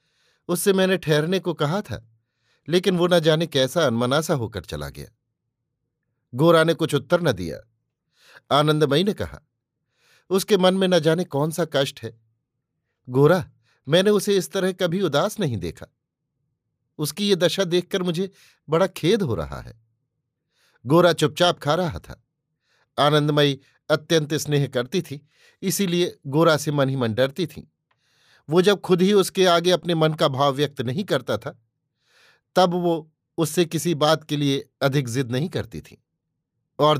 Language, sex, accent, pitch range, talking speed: Hindi, male, native, 130-170 Hz, 155 wpm